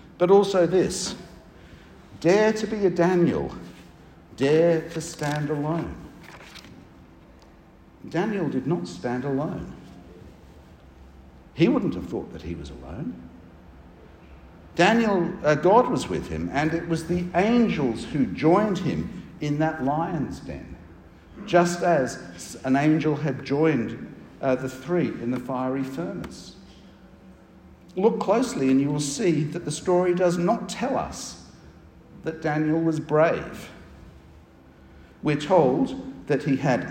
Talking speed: 125 wpm